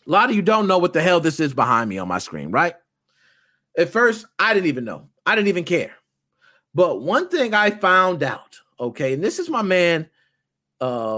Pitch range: 140-215 Hz